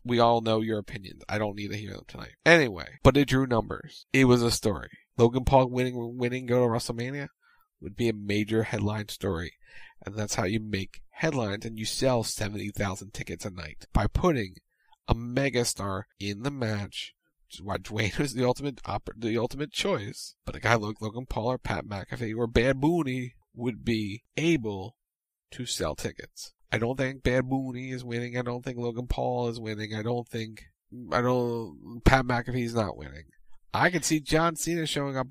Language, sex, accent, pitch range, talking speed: English, male, American, 110-130 Hz, 190 wpm